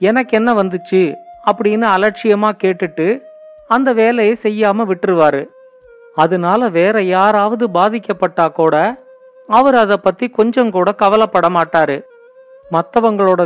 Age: 40-59